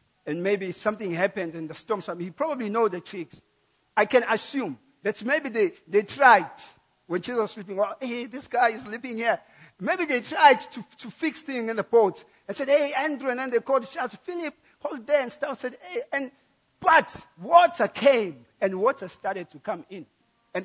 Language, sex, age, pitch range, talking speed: English, male, 50-69, 180-255 Hz, 200 wpm